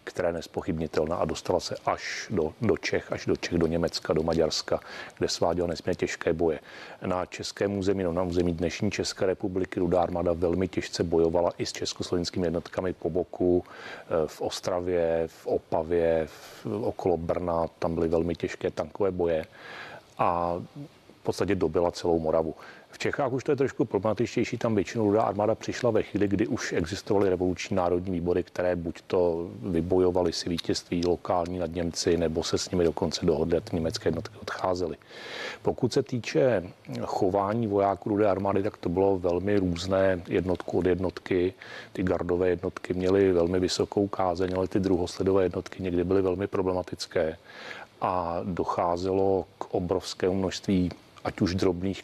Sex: male